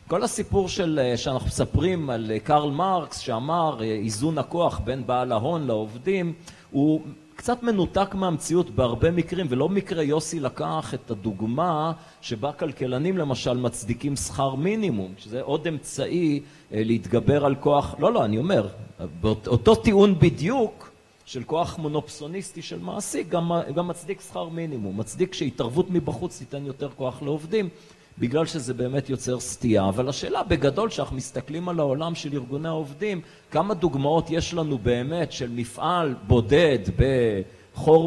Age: 40-59